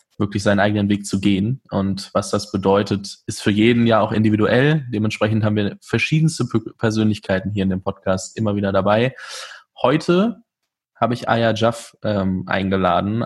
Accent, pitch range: German, 105-120 Hz